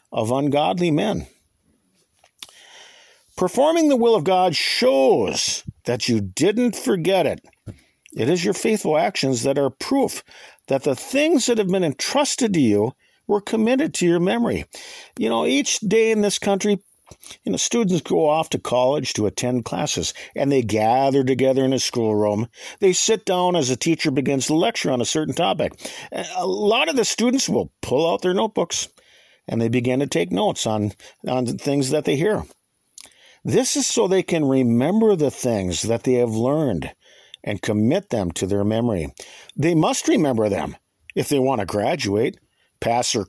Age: 50-69